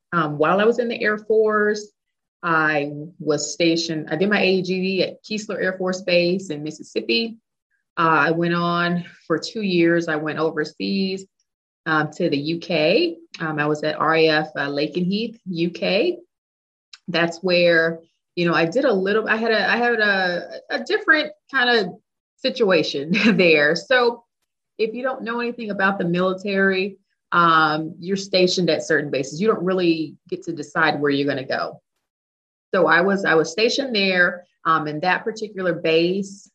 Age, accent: 30-49, American